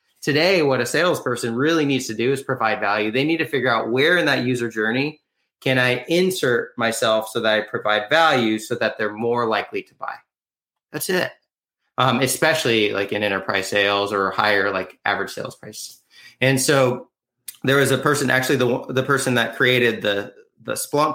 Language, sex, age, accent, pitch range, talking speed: English, male, 30-49, American, 110-130 Hz, 185 wpm